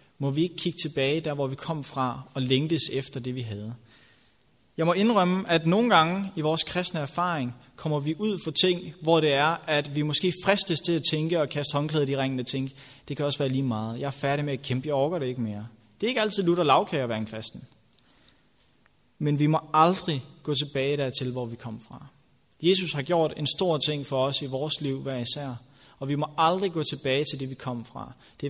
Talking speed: 240 wpm